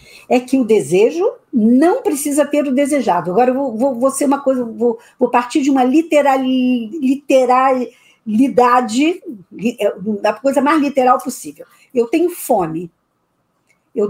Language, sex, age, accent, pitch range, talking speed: Portuguese, female, 50-69, Brazilian, 225-320 Hz, 110 wpm